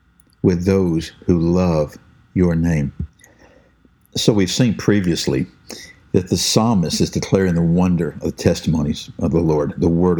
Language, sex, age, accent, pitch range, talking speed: English, male, 60-79, American, 90-115 Hz, 145 wpm